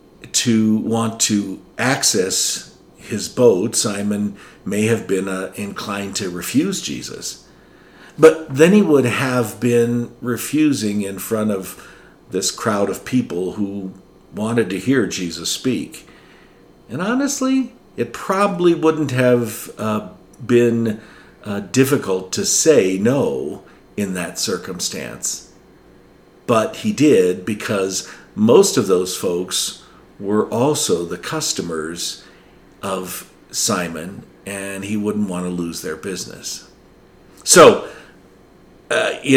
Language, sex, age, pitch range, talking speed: English, male, 50-69, 100-130 Hz, 115 wpm